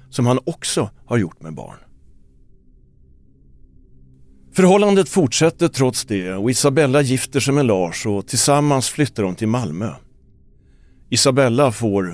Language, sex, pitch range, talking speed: Swedish, male, 90-130 Hz, 125 wpm